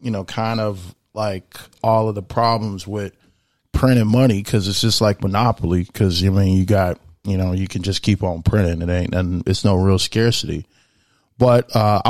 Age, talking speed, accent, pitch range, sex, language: 20-39, 195 wpm, American, 105-125 Hz, male, English